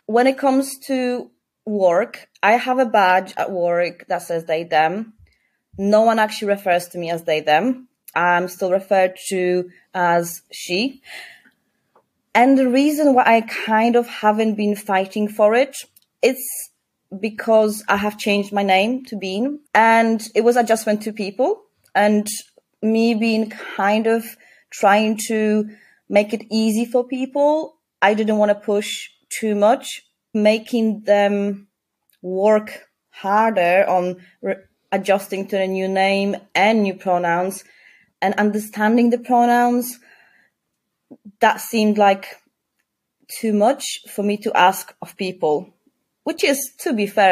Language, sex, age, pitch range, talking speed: English, female, 30-49, 190-225 Hz, 140 wpm